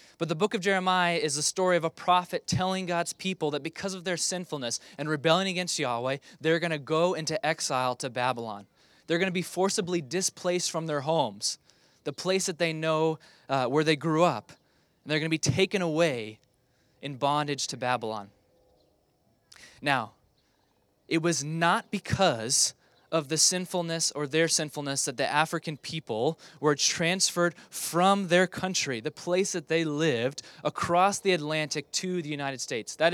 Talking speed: 170 wpm